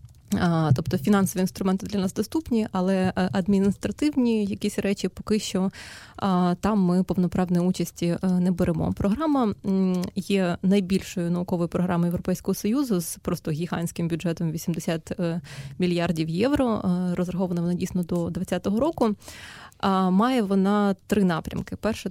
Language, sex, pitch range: Ukrainian, female, 180-205 Hz